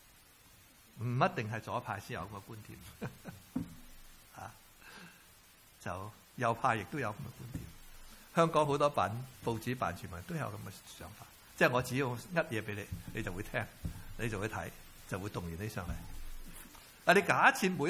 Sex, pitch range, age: male, 110-165 Hz, 60-79